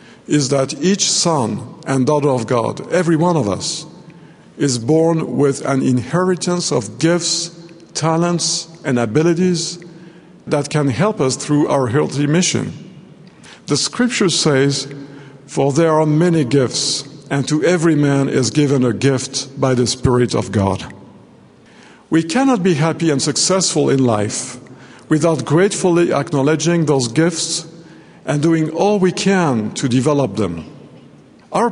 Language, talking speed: English, 140 wpm